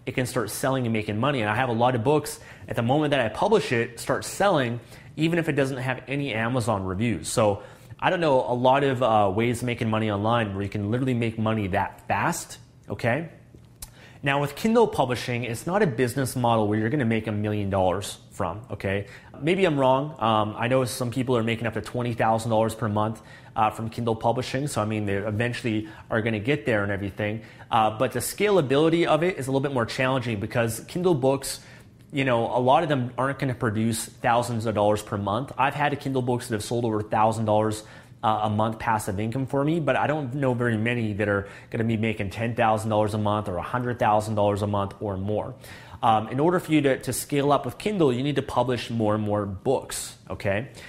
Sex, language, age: male, English, 30-49